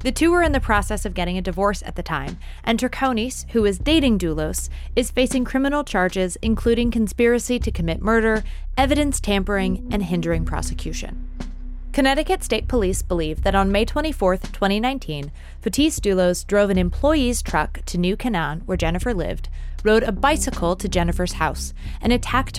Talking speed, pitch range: 165 wpm, 155-245 Hz